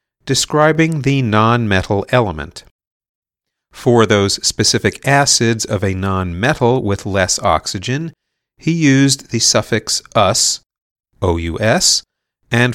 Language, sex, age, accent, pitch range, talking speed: English, male, 40-59, American, 100-135 Hz, 100 wpm